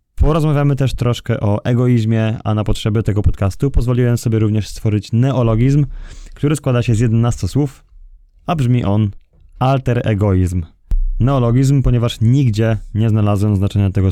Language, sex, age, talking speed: Polish, male, 20-39, 140 wpm